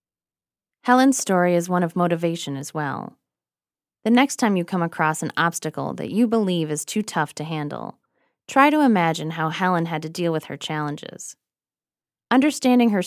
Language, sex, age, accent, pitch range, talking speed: English, female, 20-39, American, 155-220 Hz, 170 wpm